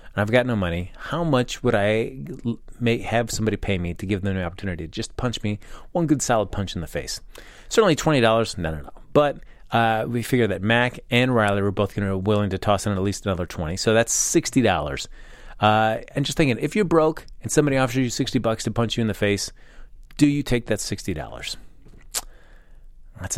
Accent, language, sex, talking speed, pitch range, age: American, English, male, 220 wpm, 100-130 Hz, 30-49